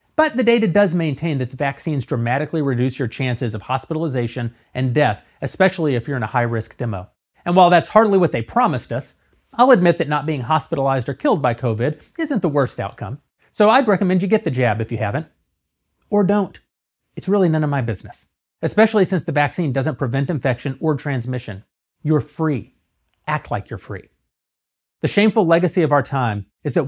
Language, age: English, 30-49